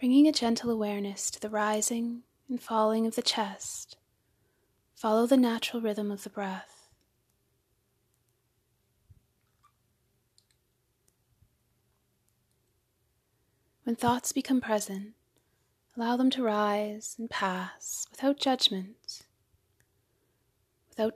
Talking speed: 90 wpm